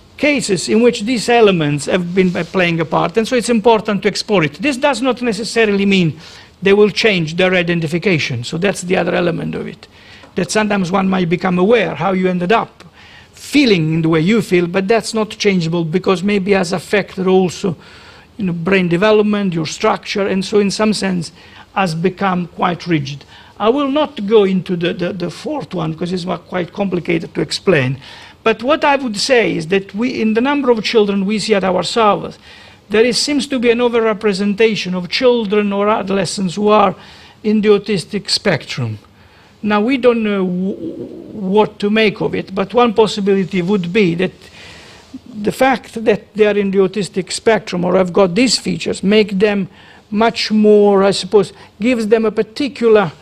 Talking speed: 190 wpm